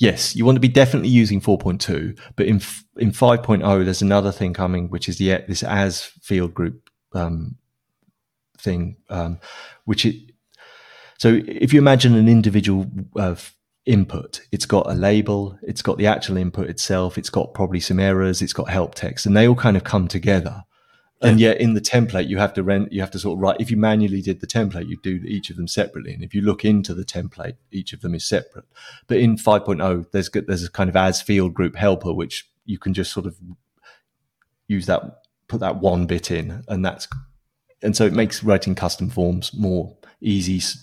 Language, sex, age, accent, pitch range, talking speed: English, male, 30-49, British, 90-110 Hz, 205 wpm